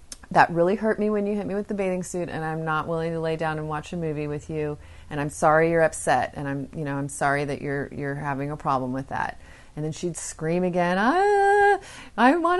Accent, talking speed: American, 250 wpm